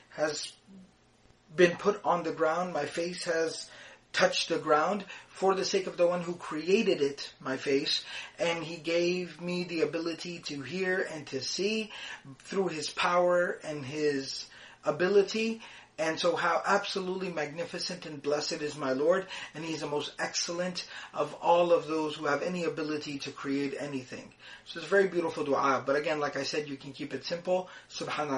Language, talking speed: English, 180 wpm